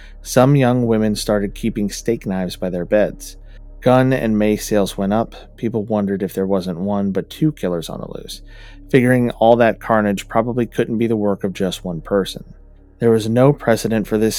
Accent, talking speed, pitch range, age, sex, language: American, 195 wpm, 100-115 Hz, 30-49, male, English